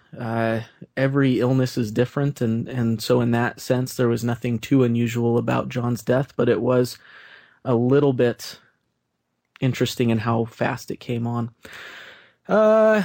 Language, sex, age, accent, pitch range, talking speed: English, male, 30-49, American, 115-135 Hz, 150 wpm